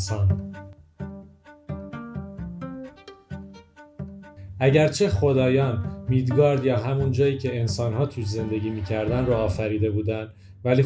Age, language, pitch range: 30-49, Persian, 100-130 Hz